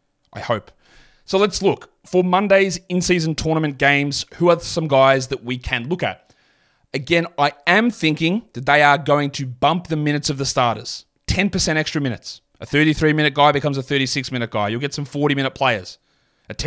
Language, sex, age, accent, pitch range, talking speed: English, male, 30-49, Australian, 130-155 Hz, 180 wpm